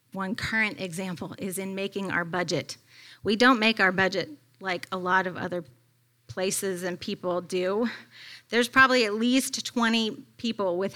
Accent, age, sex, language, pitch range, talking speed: American, 30-49, female, English, 130-215 Hz, 160 wpm